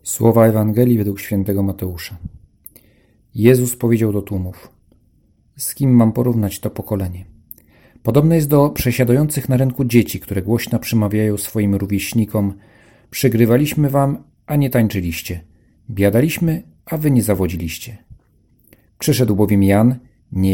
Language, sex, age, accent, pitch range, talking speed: Polish, male, 40-59, native, 95-125 Hz, 120 wpm